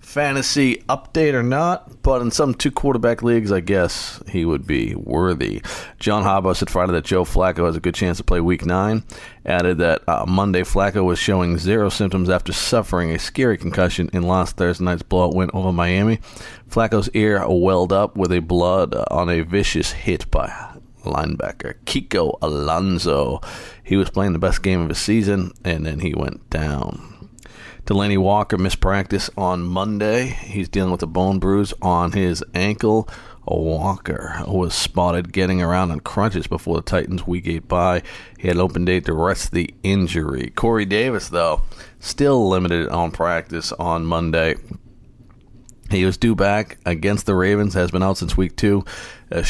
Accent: American